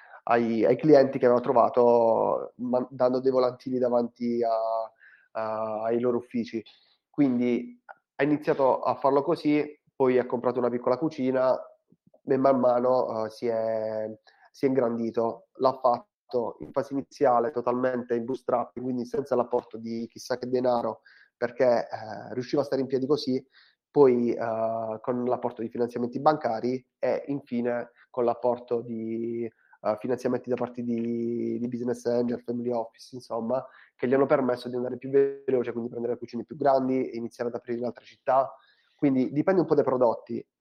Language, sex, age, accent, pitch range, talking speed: Italian, male, 20-39, native, 120-130 Hz, 150 wpm